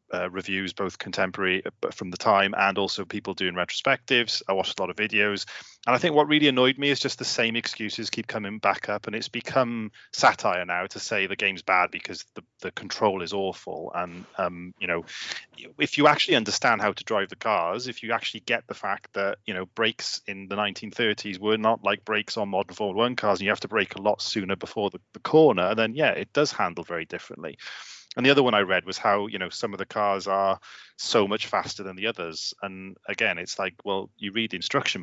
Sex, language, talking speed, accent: male, English, 230 wpm, British